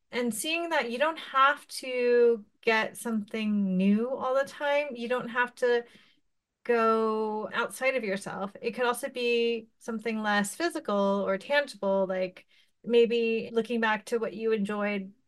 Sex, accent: female, American